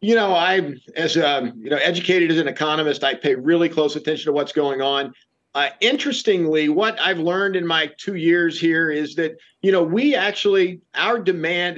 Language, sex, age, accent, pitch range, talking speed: English, male, 50-69, American, 155-185 Hz, 195 wpm